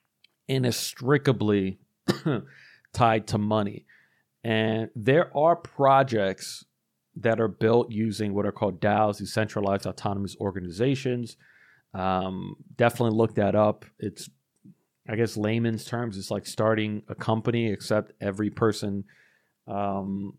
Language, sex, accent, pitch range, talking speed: English, male, American, 100-115 Hz, 110 wpm